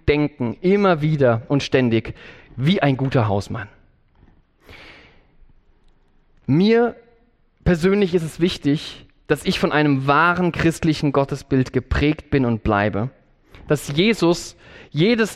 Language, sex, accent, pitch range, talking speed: German, male, German, 125-185 Hz, 110 wpm